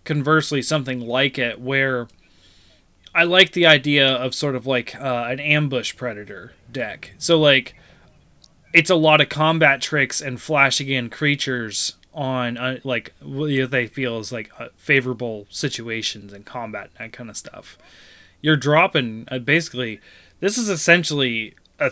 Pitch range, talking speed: 115-145 Hz, 150 wpm